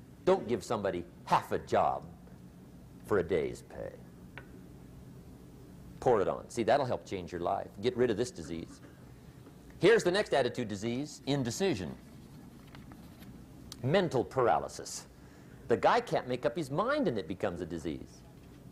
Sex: male